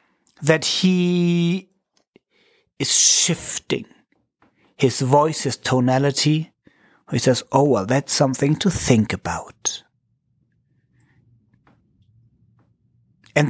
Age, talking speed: 40-59, 80 wpm